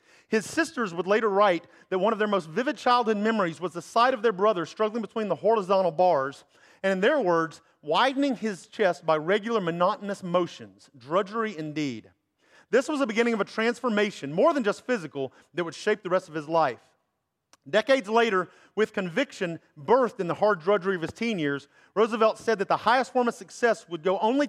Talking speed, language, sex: 195 wpm, English, male